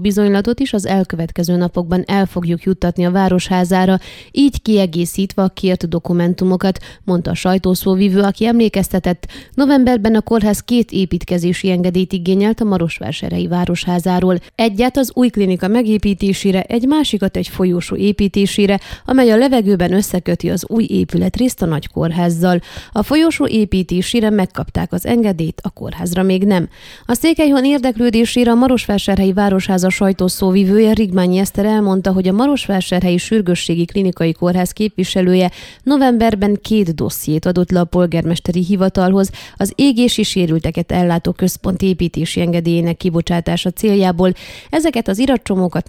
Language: Hungarian